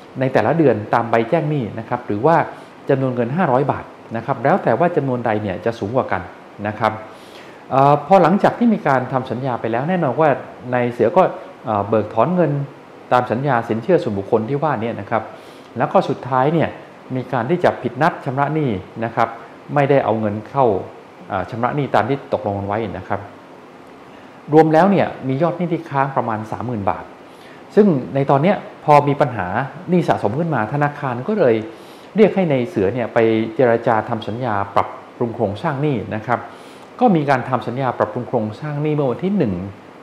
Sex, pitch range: male, 115-150 Hz